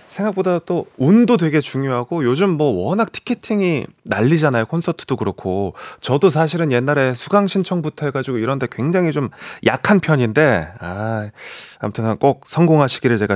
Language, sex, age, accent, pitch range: Korean, male, 30-49, native, 105-170 Hz